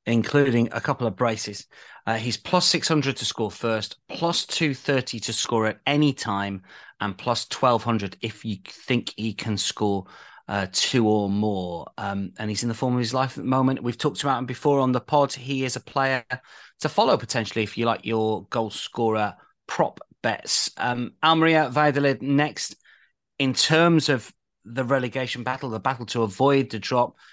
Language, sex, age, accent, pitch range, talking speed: English, male, 30-49, British, 110-140 Hz, 180 wpm